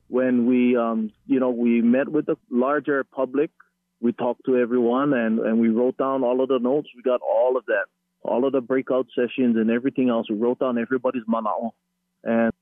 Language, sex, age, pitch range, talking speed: English, male, 30-49, 120-145 Hz, 205 wpm